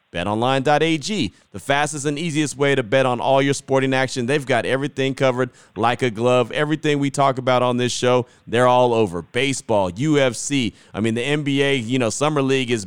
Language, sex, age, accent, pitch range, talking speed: English, male, 30-49, American, 115-140 Hz, 190 wpm